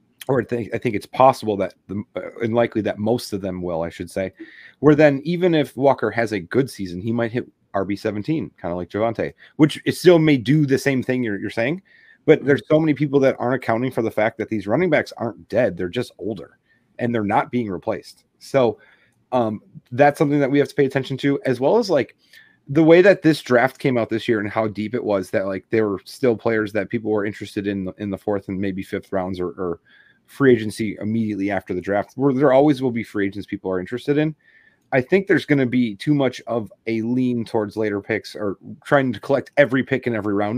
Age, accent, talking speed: 30-49, American, 240 wpm